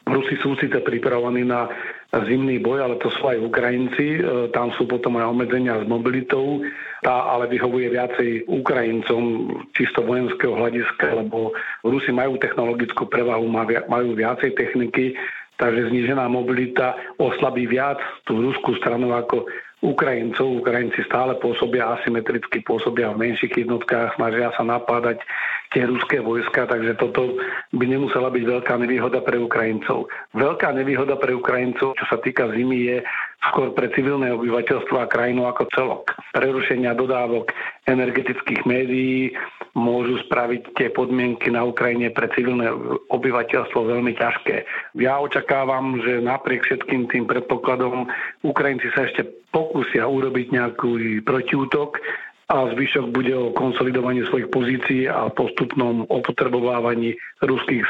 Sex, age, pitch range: male, 50-69, 120-130 Hz